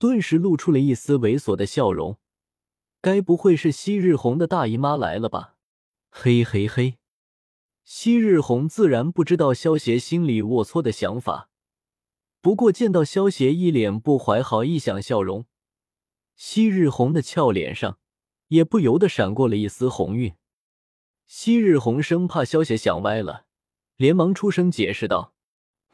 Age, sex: 20-39, male